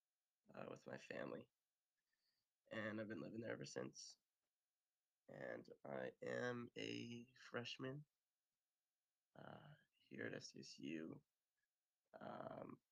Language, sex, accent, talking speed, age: English, male, American, 100 wpm, 20-39